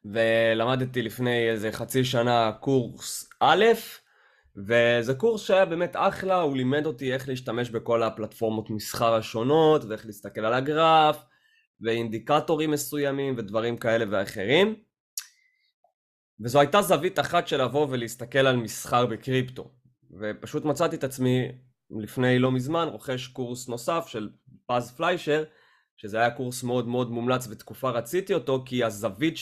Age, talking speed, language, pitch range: 20-39, 130 wpm, Hebrew, 115-155 Hz